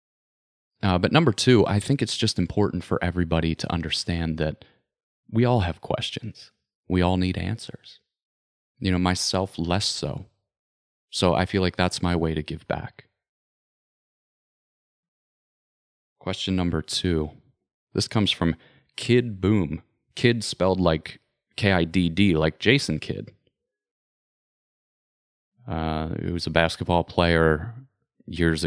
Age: 30-49